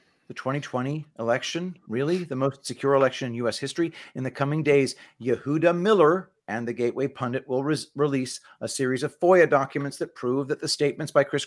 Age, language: 40-59, English